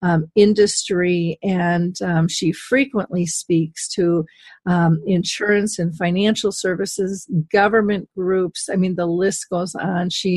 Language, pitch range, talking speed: English, 170-205 Hz, 120 wpm